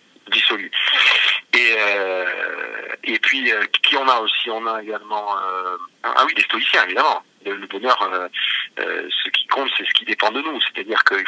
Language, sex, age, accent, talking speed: French, male, 40-59, French, 185 wpm